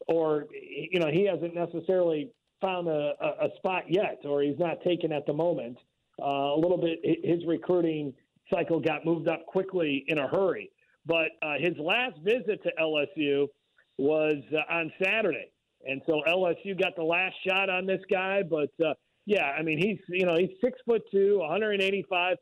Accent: American